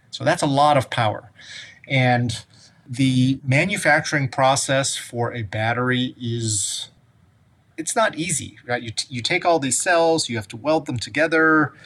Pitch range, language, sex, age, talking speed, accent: 120-140 Hz, English, male, 30-49, 150 wpm, American